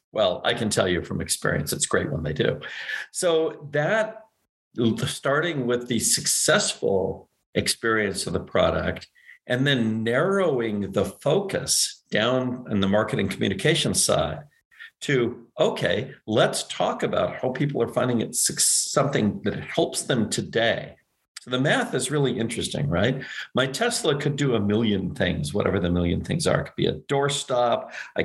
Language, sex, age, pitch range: English, male, 50-69, 105-140 Hz